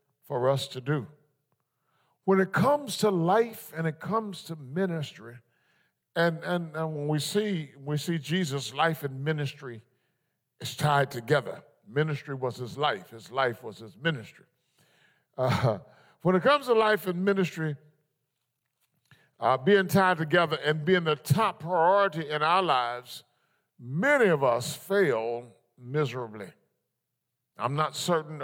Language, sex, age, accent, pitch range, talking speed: English, male, 50-69, American, 140-190 Hz, 140 wpm